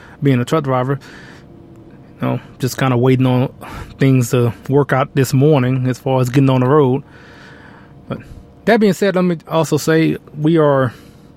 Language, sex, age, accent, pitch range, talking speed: English, male, 20-39, American, 130-155 Hz, 180 wpm